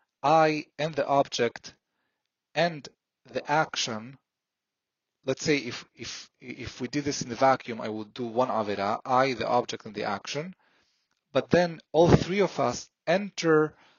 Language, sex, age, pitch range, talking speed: English, male, 30-49, 110-145 Hz, 155 wpm